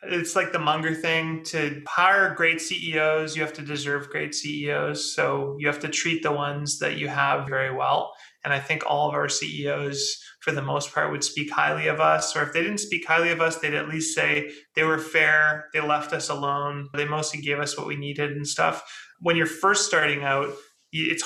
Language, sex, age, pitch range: English, male, 30-49, 145-165 Hz